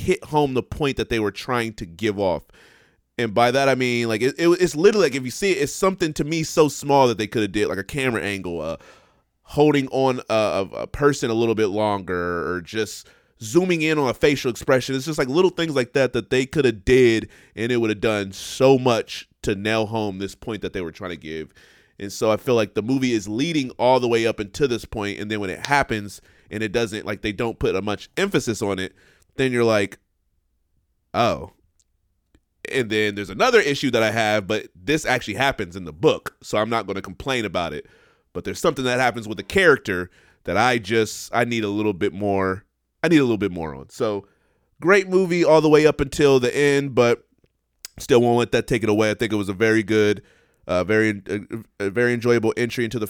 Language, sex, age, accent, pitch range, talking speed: English, male, 30-49, American, 100-130 Hz, 235 wpm